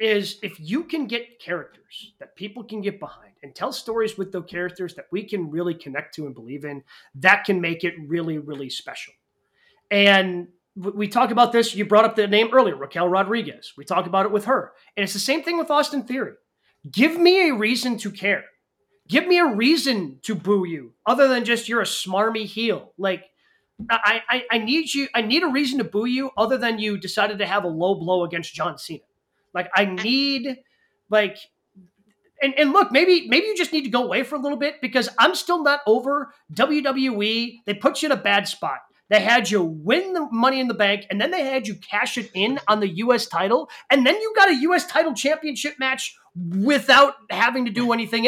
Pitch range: 195-270 Hz